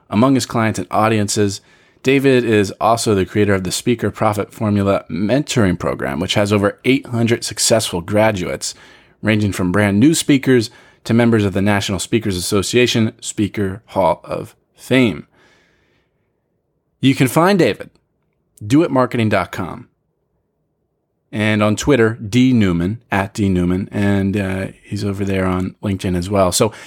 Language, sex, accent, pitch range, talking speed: English, male, American, 100-125 Hz, 140 wpm